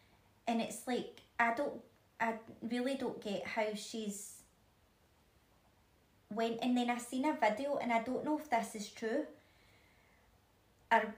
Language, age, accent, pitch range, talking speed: English, 30-49, British, 205-235 Hz, 145 wpm